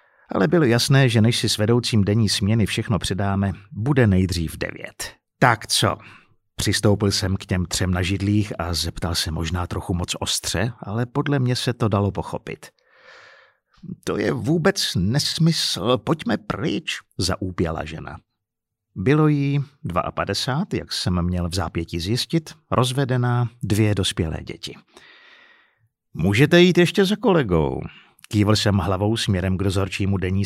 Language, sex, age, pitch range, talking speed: Czech, male, 50-69, 95-125 Hz, 140 wpm